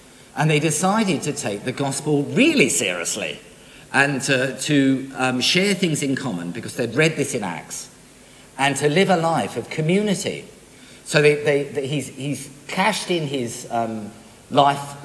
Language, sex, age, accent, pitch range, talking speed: English, male, 50-69, British, 130-175 Hz, 165 wpm